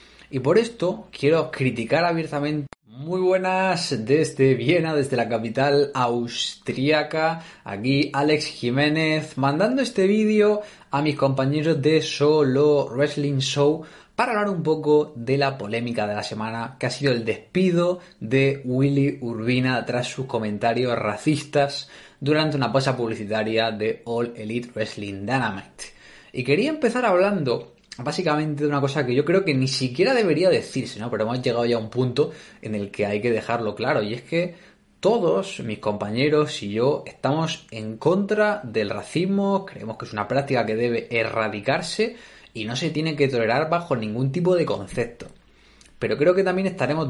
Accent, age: Spanish, 20-39